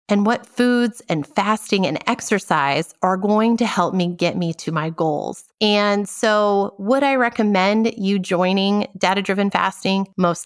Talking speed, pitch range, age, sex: 155 wpm, 175-235 Hz, 30-49, female